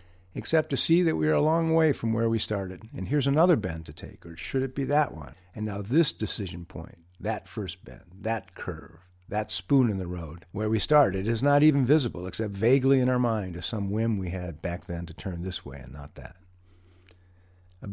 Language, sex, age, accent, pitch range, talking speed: English, male, 50-69, American, 90-130 Hz, 225 wpm